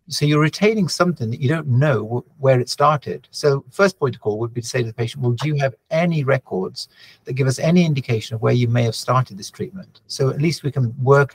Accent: British